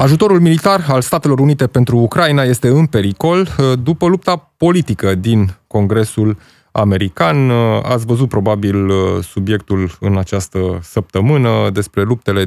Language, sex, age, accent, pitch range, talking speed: Romanian, male, 20-39, native, 100-125 Hz, 120 wpm